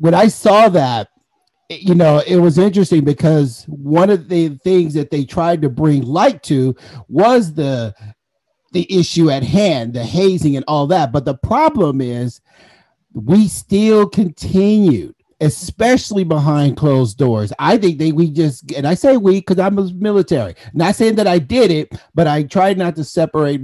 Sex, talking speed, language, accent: male, 175 wpm, English, American